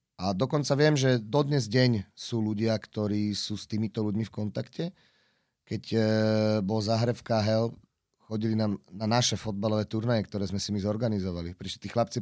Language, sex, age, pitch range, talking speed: Slovak, male, 30-49, 105-125 Hz, 155 wpm